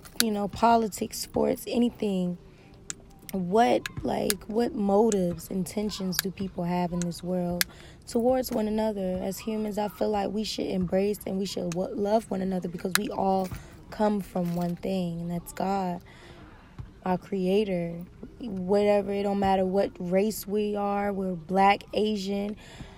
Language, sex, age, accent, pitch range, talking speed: English, female, 20-39, American, 180-210 Hz, 145 wpm